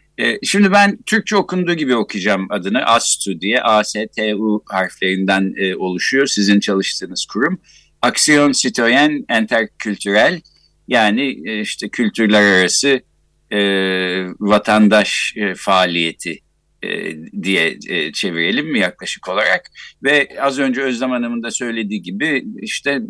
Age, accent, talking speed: 60-79, native, 100 wpm